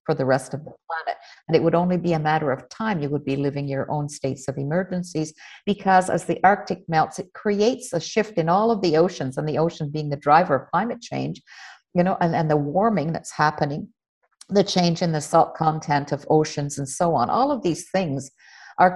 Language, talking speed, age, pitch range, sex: English, 225 wpm, 50-69, 140-175 Hz, female